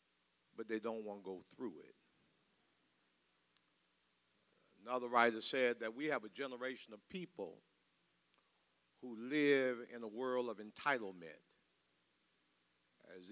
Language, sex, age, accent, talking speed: English, male, 60-79, American, 115 wpm